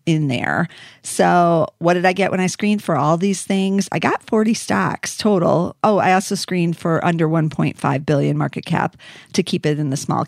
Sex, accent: female, American